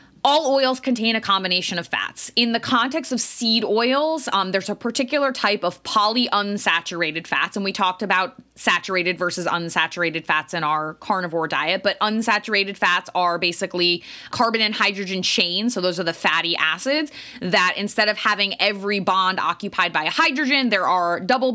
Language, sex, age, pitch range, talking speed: English, female, 20-39, 175-235 Hz, 170 wpm